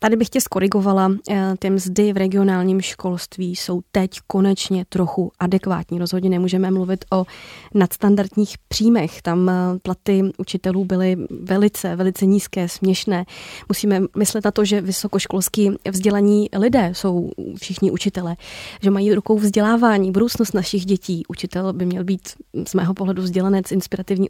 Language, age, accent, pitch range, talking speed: Czech, 20-39, native, 185-215 Hz, 135 wpm